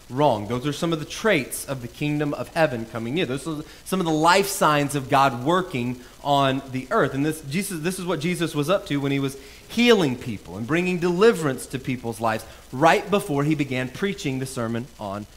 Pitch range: 150-215 Hz